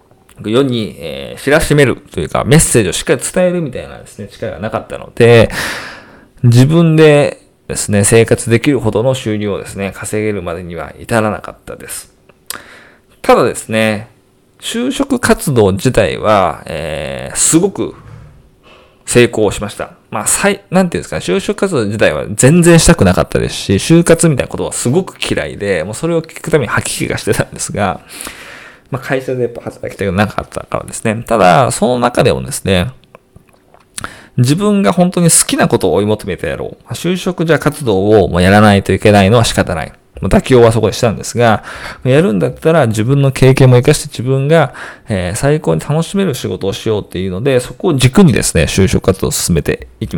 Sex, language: male, Japanese